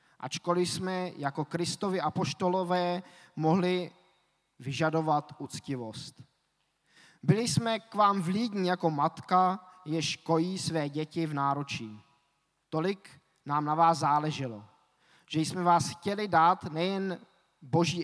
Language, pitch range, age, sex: Czech, 150-185 Hz, 20-39, male